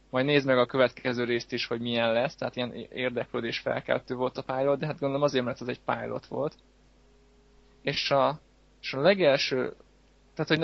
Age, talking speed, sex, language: 20-39, 185 wpm, male, Hungarian